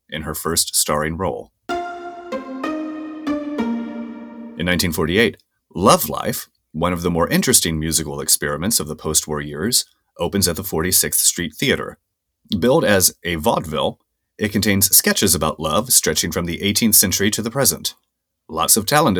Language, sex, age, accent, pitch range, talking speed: English, male, 30-49, American, 80-135 Hz, 145 wpm